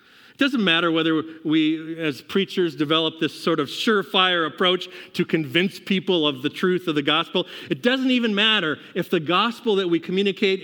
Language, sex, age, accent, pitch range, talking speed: English, male, 50-69, American, 145-195 Hz, 180 wpm